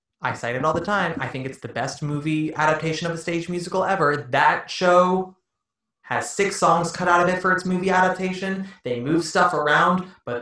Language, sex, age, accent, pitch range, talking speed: English, male, 20-39, American, 130-180 Hz, 205 wpm